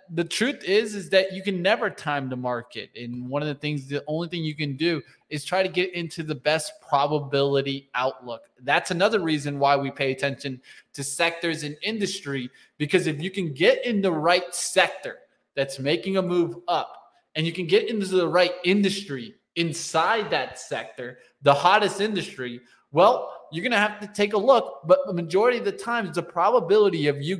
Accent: American